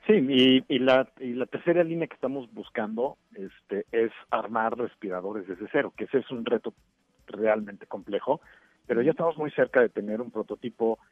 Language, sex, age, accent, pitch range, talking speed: Spanish, male, 50-69, Mexican, 110-145 Hz, 180 wpm